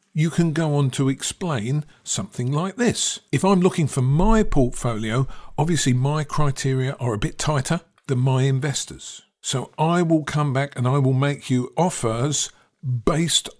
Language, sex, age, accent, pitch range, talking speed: English, male, 50-69, British, 125-160 Hz, 165 wpm